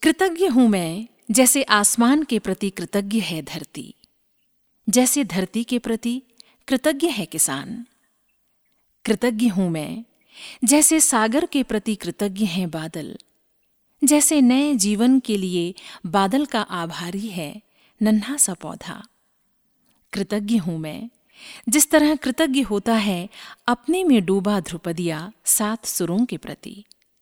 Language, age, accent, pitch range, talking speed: Hindi, 50-69, native, 195-260 Hz, 125 wpm